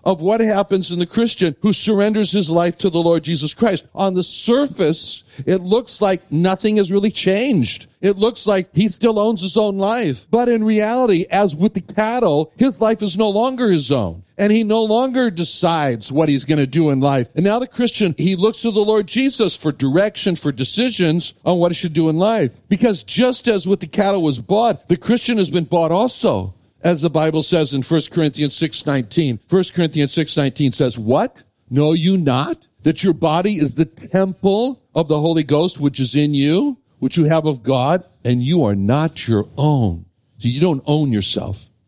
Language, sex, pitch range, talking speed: English, male, 140-205 Hz, 200 wpm